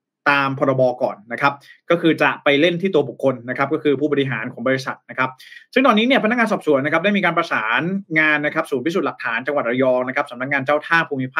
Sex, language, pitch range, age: male, Thai, 135-170 Hz, 20-39